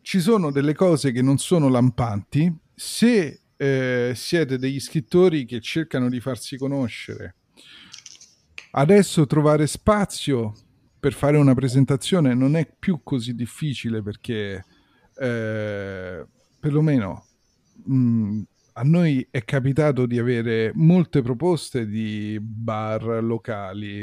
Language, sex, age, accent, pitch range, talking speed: Italian, male, 40-59, native, 110-140 Hz, 110 wpm